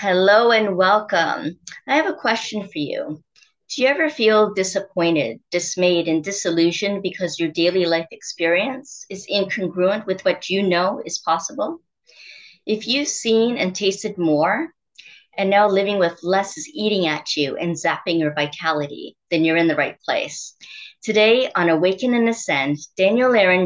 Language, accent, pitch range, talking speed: English, American, 170-230 Hz, 155 wpm